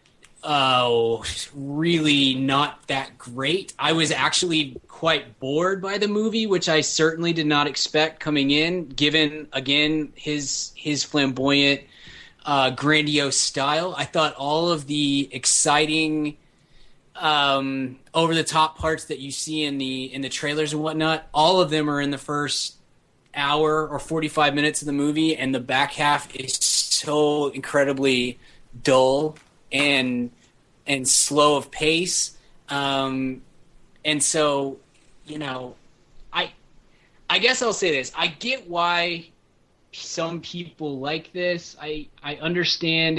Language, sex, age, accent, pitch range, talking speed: English, male, 20-39, American, 135-155 Hz, 140 wpm